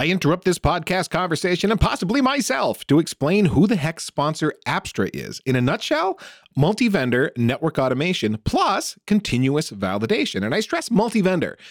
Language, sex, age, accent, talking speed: English, male, 40-59, American, 150 wpm